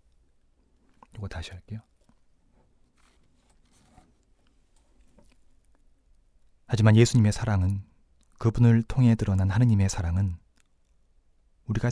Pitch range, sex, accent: 80-110 Hz, male, native